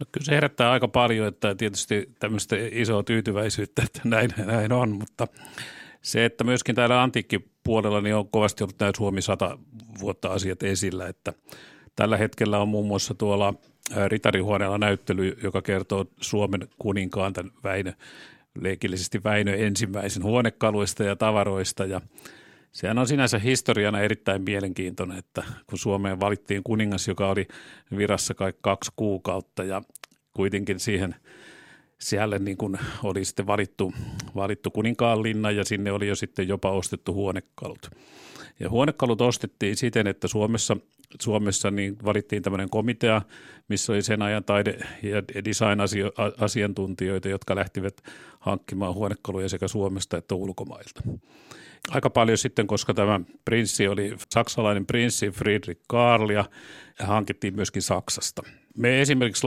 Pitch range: 100-110 Hz